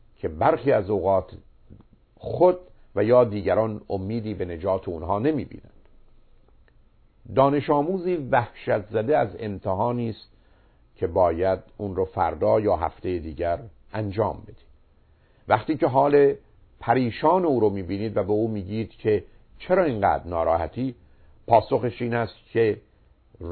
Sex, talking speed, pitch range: male, 135 wpm, 100-135 Hz